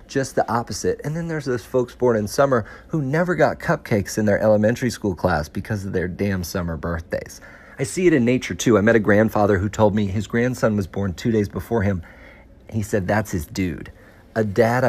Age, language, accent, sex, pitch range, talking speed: 40-59, English, American, male, 100-125 Hz, 220 wpm